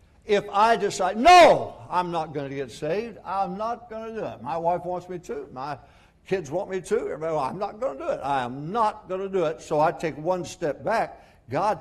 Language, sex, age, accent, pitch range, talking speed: English, male, 60-79, American, 135-210 Hz, 235 wpm